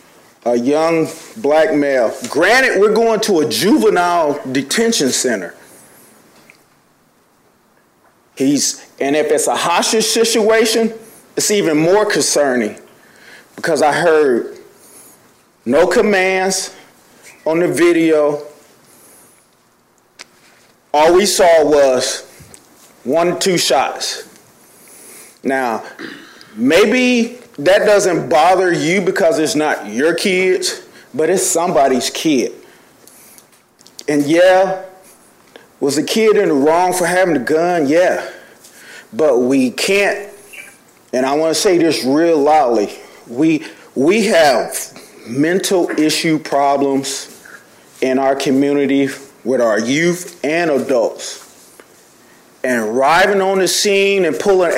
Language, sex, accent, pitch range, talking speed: English, male, American, 150-215 Hz, 110 wpm